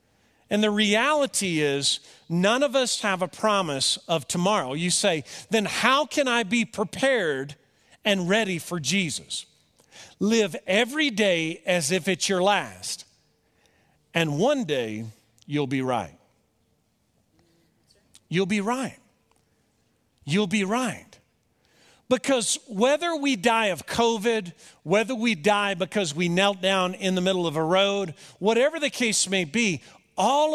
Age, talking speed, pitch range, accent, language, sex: 50-69, 135 wpm, 165-230 Hz, American, English, male